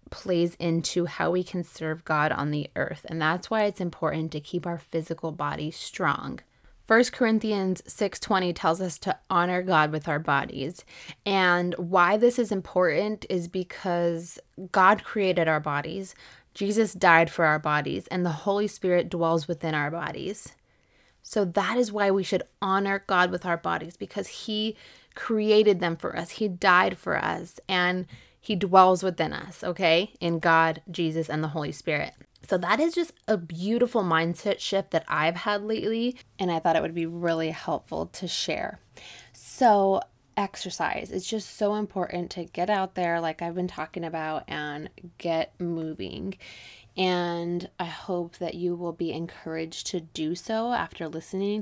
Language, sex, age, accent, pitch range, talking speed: English, female, 20-39, American, 165-200 Hz, 165 wpm